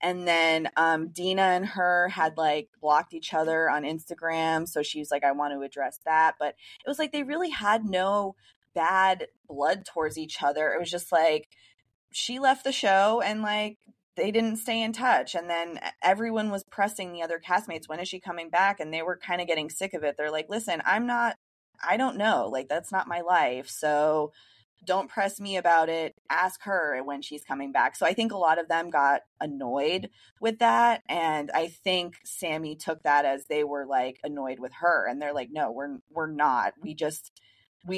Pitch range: 150-195 Hz